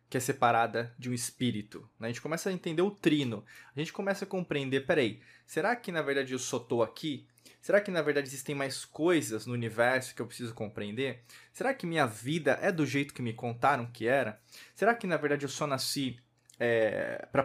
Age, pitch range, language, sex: 20-39, 120-155 Hz, Portuguese, male